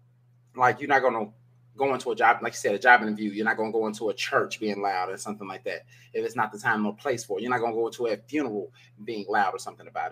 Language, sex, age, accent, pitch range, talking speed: English, male, 20-39, American, 120-125 Hz, 300 wpm